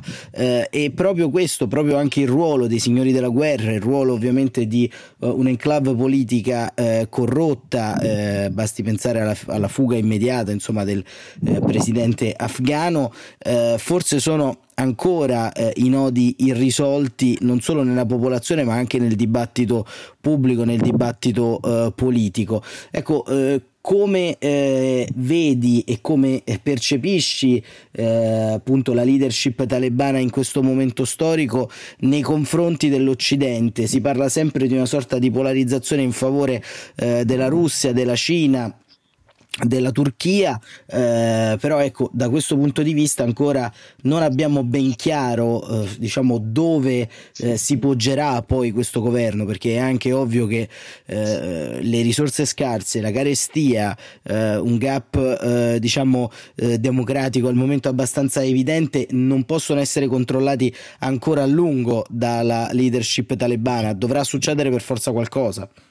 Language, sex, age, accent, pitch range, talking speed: Italian, male, 30-49, native, 120-140 Hz, 135 wpm